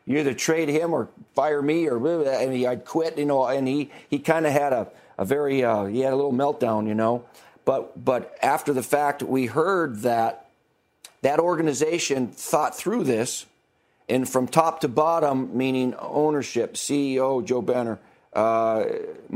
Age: 50-69